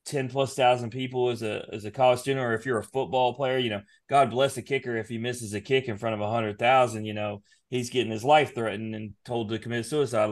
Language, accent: English, American